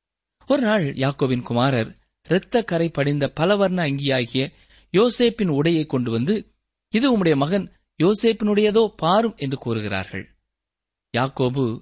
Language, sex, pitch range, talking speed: Tamil, male, 120-185 Hz, 100 wpm